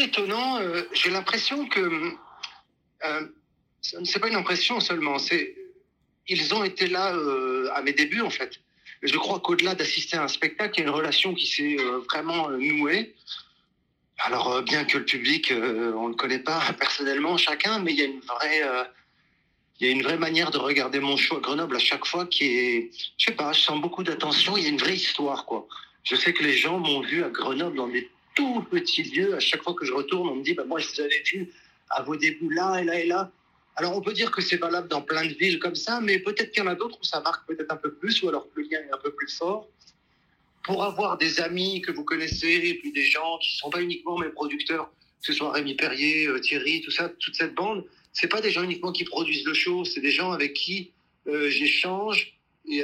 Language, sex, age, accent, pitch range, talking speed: French, male, 40-59, French, 150-215 Hz, 235 wpm